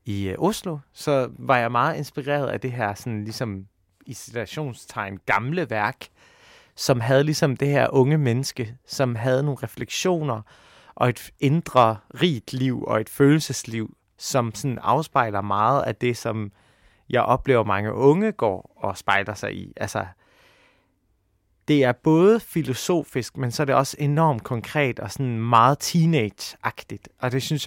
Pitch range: 105-140 Hz